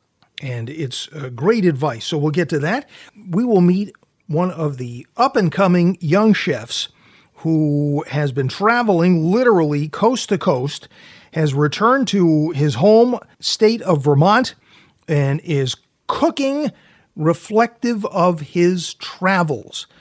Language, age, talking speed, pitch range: English, 40-59, 125 wpm, 135-185 Hz